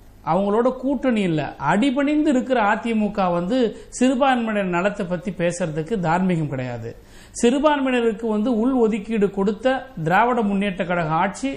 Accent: native